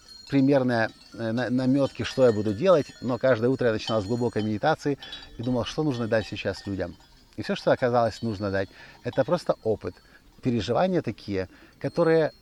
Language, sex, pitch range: Russian, male, 105-135 Hz